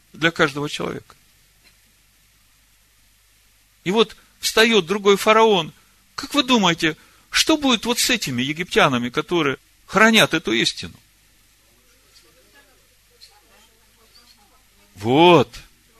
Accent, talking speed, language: native, 85 wpm, Russian